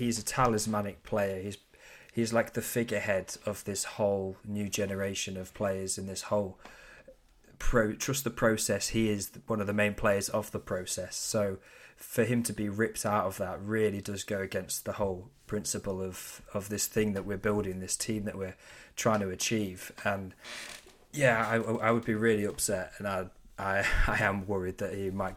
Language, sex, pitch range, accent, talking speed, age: English, male, 95-115 Hz, British, 190 wpm, 20-39